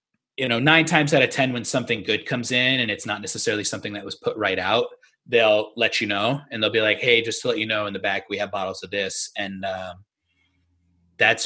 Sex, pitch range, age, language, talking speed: male, 115-160 Hz, 30-49, English, 245 wpm